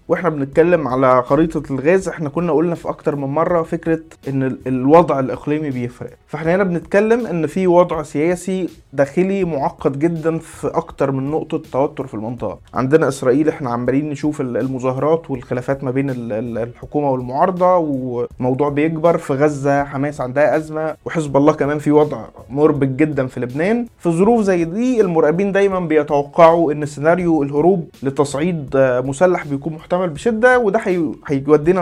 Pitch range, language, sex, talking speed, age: 140-180 Hz, Arabic, male, 145 wpm, 20-39